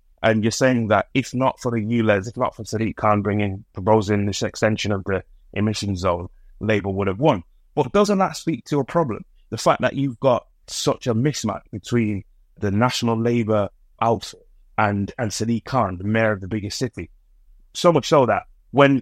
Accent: British